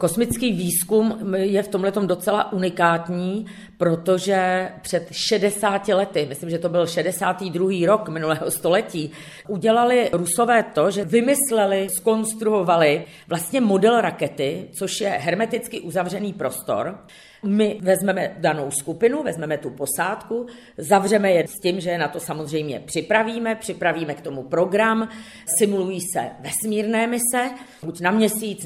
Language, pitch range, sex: Czech, 170-220 Hz, female